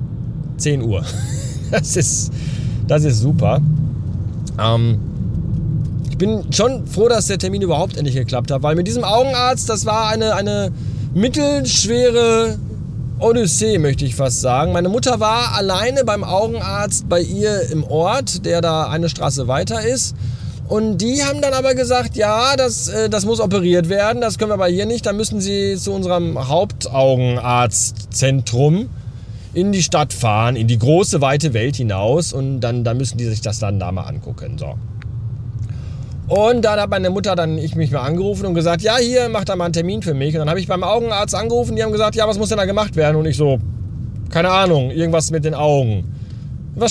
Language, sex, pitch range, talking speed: German, male, 120-190 Hz, 185 wpm